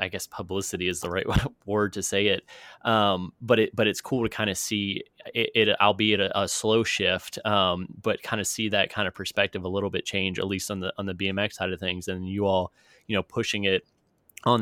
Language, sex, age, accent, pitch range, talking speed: English, male, 20-39, American, 95-115 Hz, 240 wpm